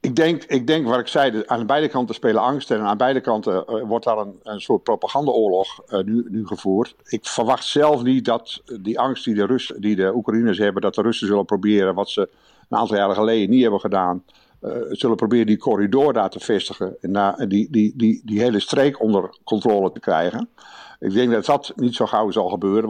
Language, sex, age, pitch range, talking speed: Dutch, male, 50-69, 100-125 Hz, 225 wpm